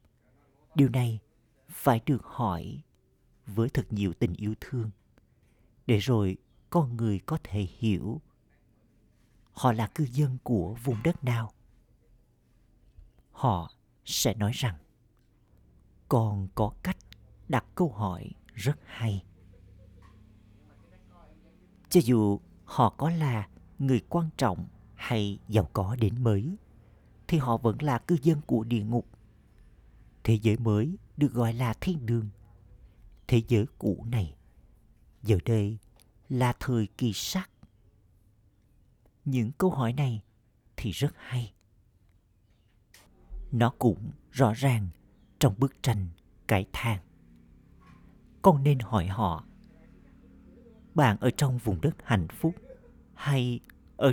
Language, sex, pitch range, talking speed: Vietnamese, male, 100-130 Hz, 120 wpm